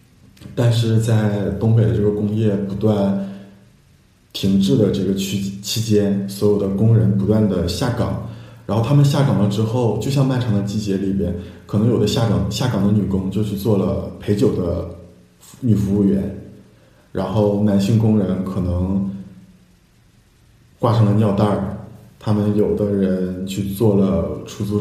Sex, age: male, 20-39